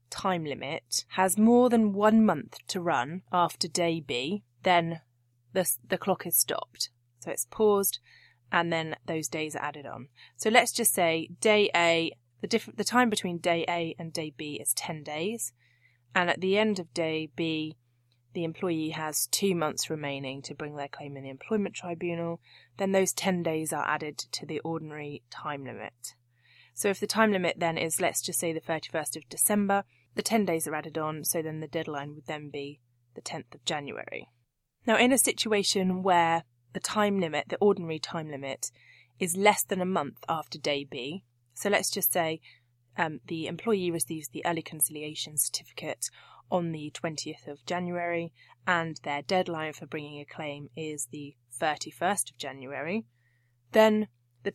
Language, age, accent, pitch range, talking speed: English, 20-39, British, 145-185 Hz, 175 wpm